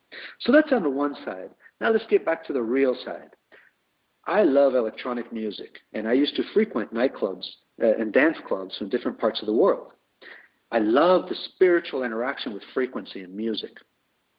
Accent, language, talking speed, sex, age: American, English, 175 wpm, male, 50-69